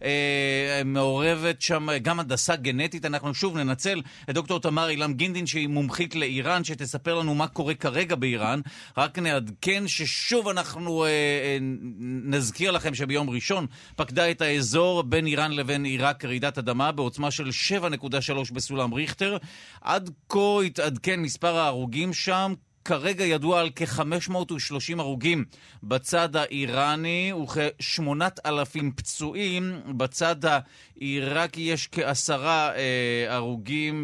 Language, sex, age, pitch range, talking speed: Hebrew, male, 40-59, 135-170 Hz, 120 wpm